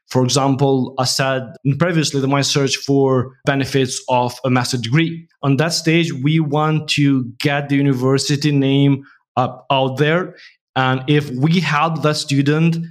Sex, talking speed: male, 155 wpm